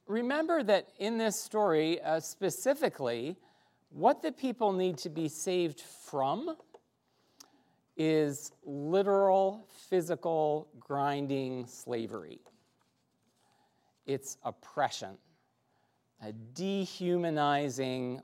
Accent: American